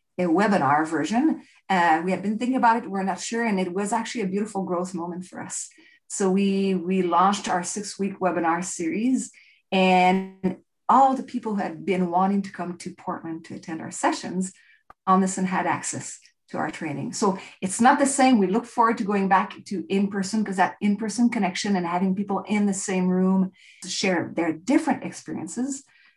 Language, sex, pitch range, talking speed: English, female, 175-215 Hz, 195 wpm